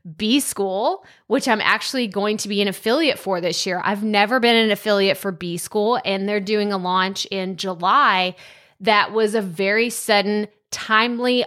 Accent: American